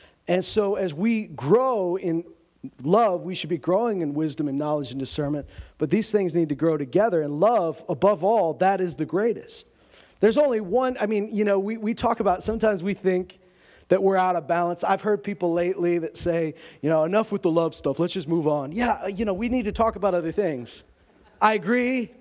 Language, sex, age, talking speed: English, male, 40-59, 215 wpm